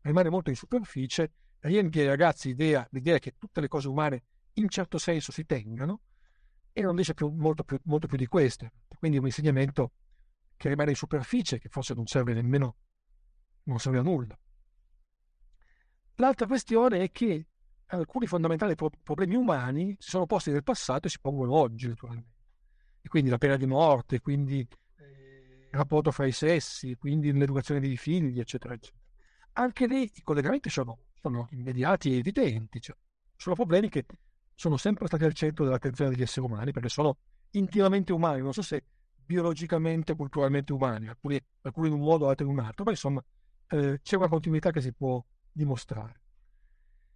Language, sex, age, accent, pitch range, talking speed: Italian, male, 50-69, native, 130-170 Hz, 170 wpm